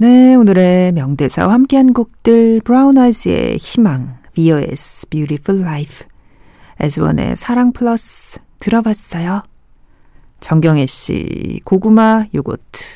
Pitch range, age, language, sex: 160-225 Hz, 40-59, Korean, female